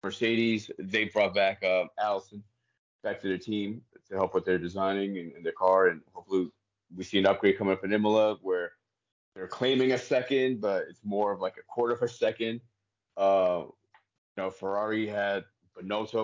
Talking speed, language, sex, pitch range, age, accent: 185 wpm, English, male, 95-120 Hz, 20-39, American